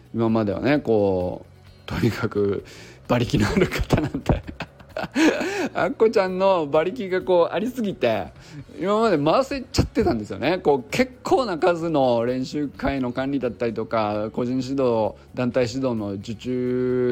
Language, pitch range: Japanese, 100-135 Hz